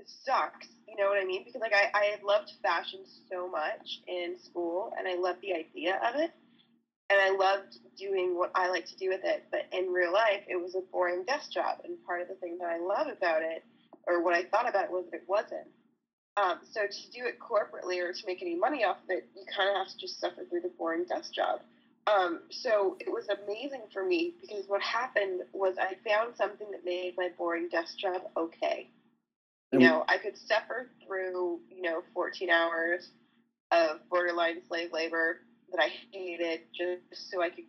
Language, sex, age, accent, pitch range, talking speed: English, female, 20-39, American, 175-235 Hz, 210 wpm